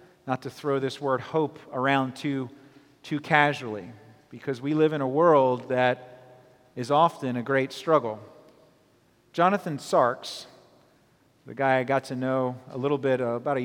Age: 40-59